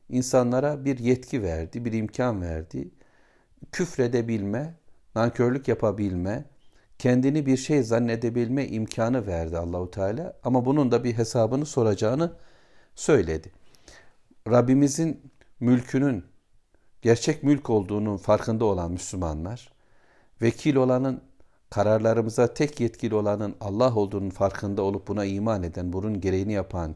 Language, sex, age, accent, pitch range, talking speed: Turkish, male, 60-79, native, 95-130 Hz, 110 wpm